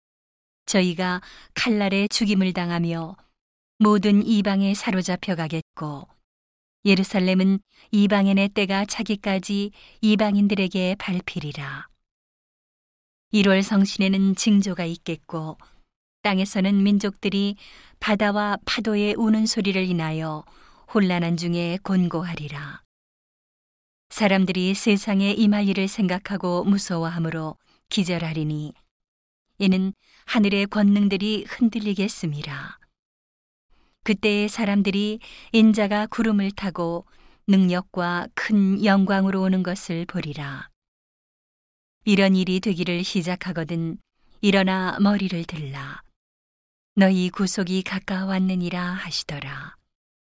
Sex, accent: female, native